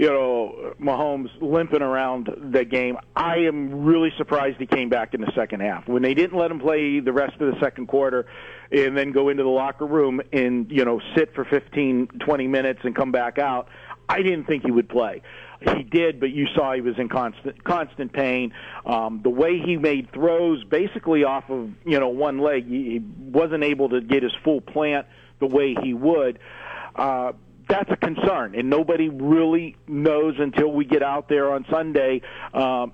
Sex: male